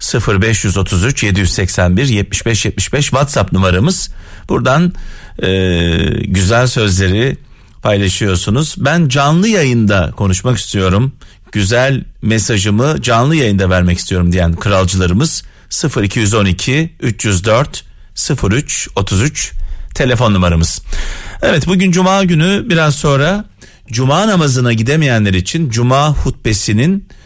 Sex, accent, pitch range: male, native, 95-150 Hz